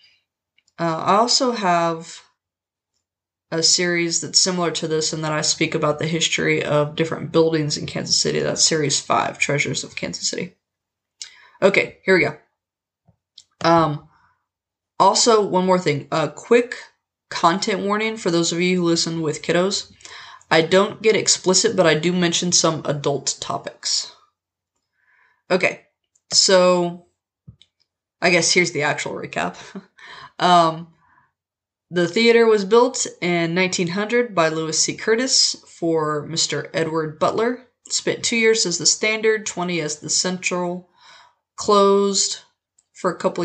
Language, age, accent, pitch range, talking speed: English, 20-39, American, 160-190 Hz, 135 wpm